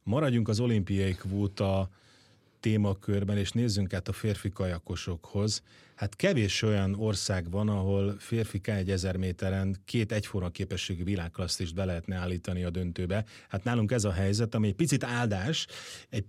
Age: 30-49